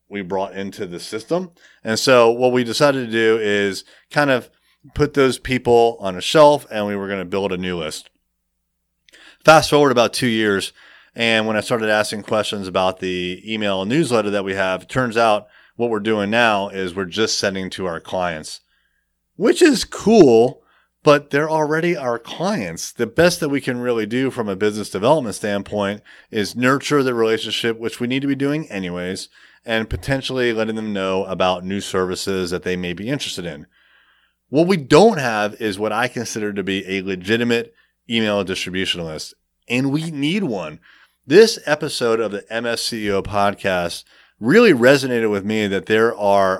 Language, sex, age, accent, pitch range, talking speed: English, male, 30-49, American, 100-130 Hz, 175 wpm